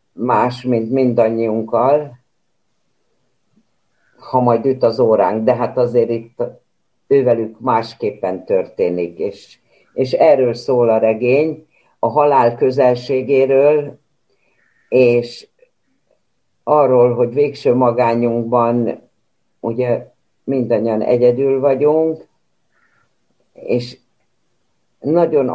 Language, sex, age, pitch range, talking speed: Hungarian, female, 60-79, 115-140 Hz, 80 wpm